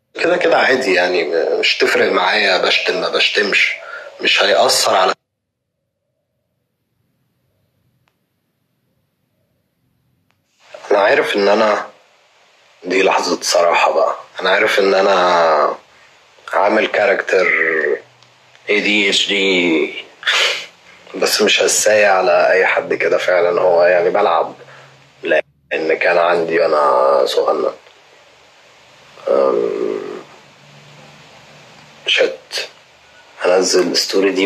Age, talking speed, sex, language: 30-49, 90 wpm, male, Arabic